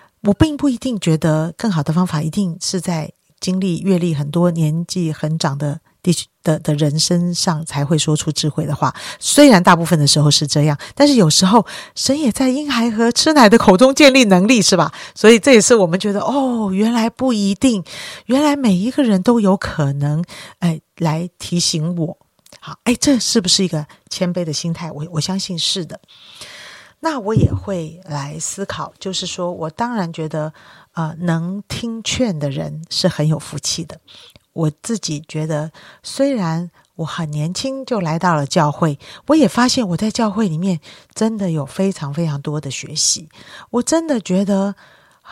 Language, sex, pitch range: Chinese, female, 155-215 Hz